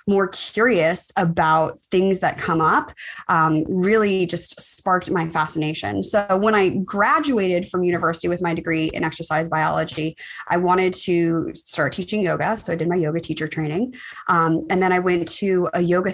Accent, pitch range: American, 170-210 Hz